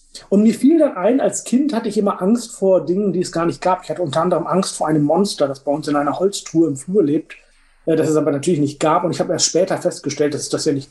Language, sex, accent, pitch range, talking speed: German, male, German, 165-220 Hz, 285 wpm